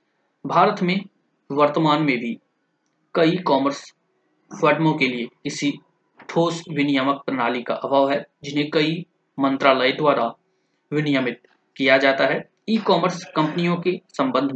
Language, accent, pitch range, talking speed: Hindi, native, 135-170 Hz, 110 wpm